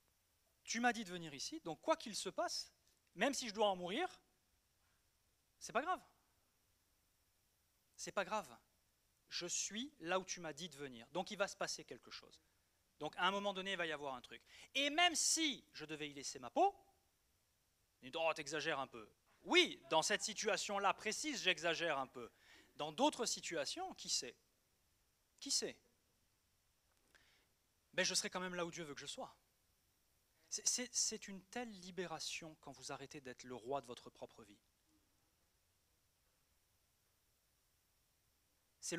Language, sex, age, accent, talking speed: French, male, 30-49, French, 160 wpm